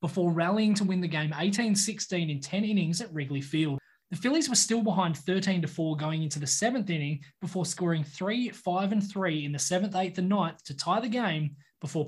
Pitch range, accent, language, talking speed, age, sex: 155-200 Hz, Australian, English, 200 wpm, 20-39, male